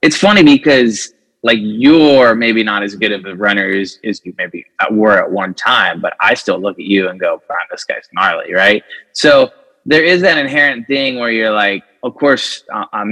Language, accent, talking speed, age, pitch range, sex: English, American, 200 wpm, 20-39, 105-140 Hz, male